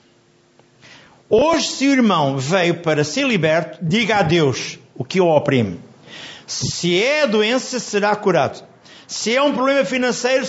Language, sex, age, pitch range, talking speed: Portuguese, male, 50-69, 150-225 Hz, 150 wpm